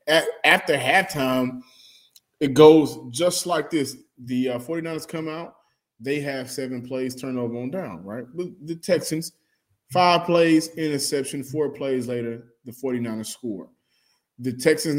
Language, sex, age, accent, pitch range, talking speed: English, male, 20-39, American, 125-165 Hz, 130 wpm